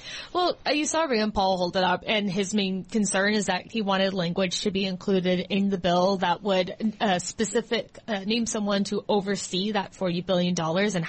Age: 20-39